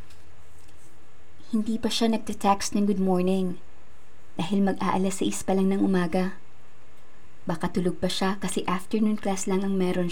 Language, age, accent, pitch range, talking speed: Filipino, 20-39, native, 165-205 Hz, 140 wpm